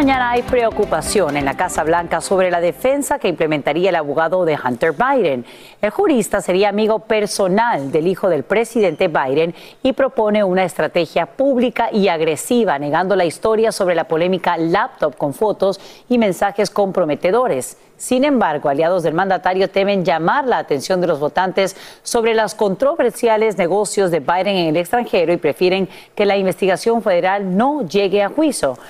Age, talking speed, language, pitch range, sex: 40-59, 160 wpm, Spanish, 170-225 Hz, female